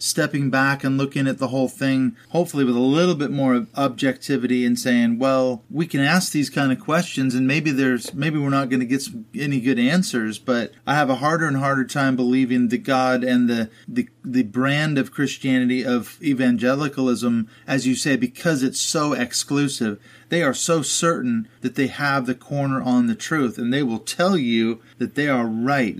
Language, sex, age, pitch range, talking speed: English, male, 30-49, 125-145 Hz, 200 wpm